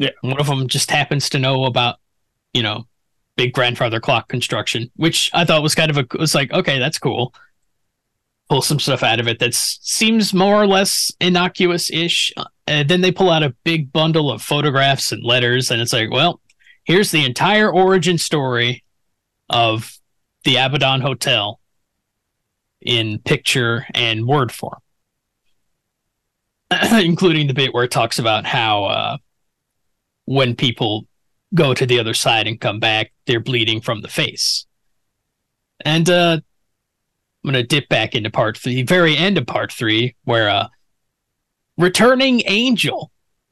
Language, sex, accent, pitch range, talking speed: English, male, American, 120-160 Hz, 160 wpm